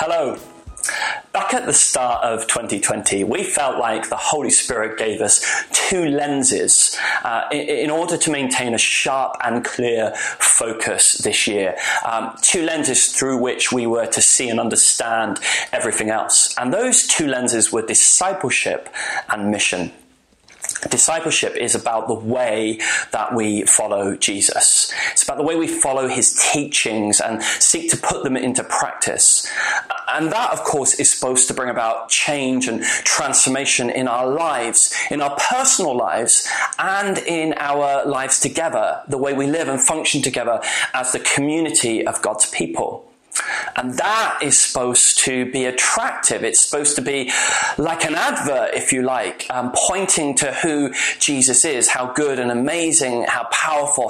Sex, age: male, 30-49